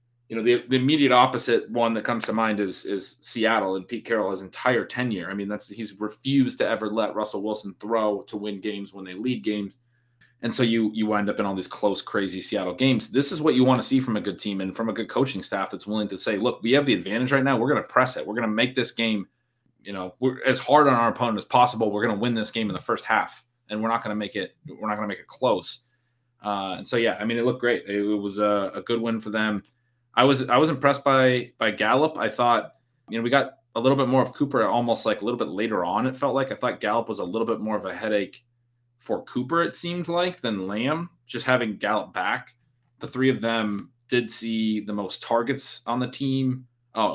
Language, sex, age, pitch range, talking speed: English, male, 30-49, 100-125 Hz, 255 wpm